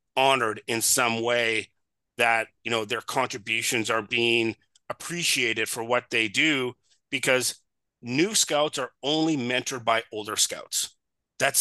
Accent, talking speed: American, 135 wpm